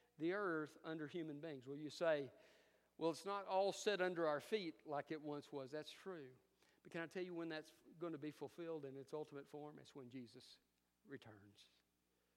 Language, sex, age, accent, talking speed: English, male, 50-69, American, 200 wpm